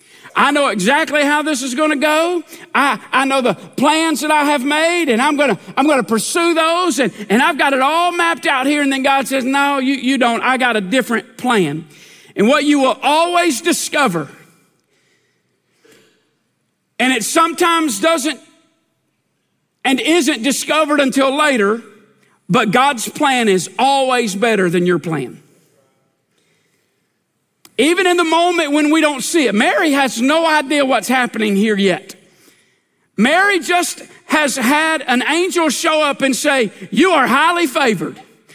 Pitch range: 210-310 Hz